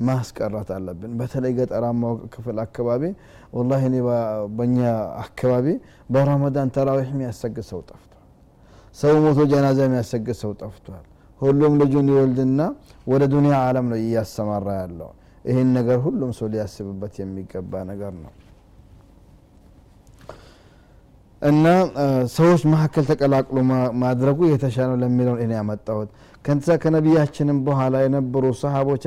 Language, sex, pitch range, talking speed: Amharic, male, 115-145 Hz, 95 wpm